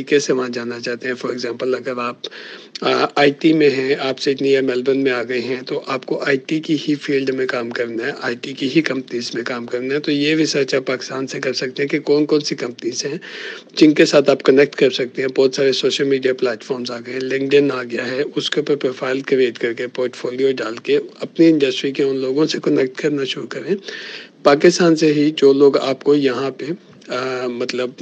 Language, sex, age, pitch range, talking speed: Urdu, male, 50-69, 125-140 Hz, 140 wpm